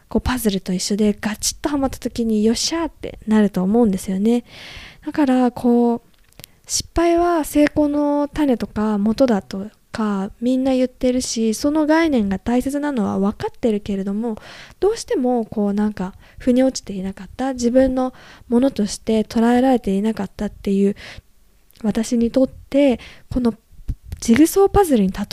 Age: 20-39